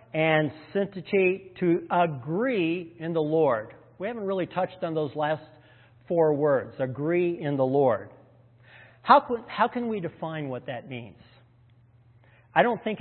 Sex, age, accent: male, 50-69, American